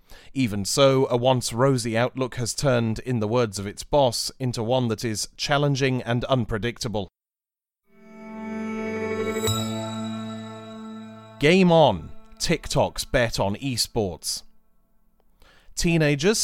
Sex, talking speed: male, 100 wpm